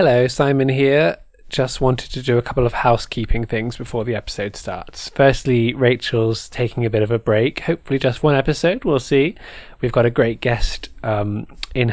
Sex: male